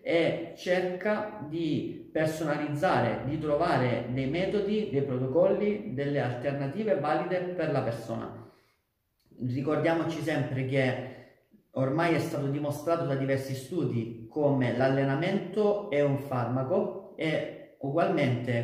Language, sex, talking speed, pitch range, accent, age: Italian, male, 105 wpm, 135-175 Hz, native, 40-59